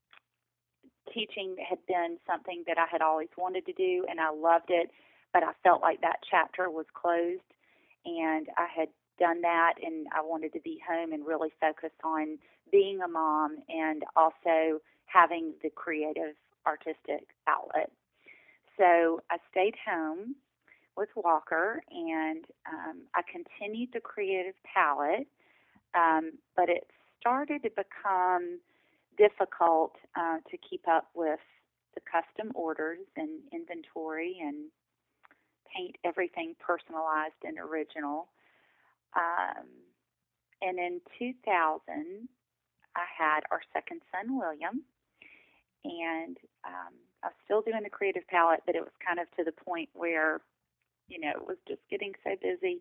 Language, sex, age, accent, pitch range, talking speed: English, female, 30-49, American, 160-255 Hz, 135 wpm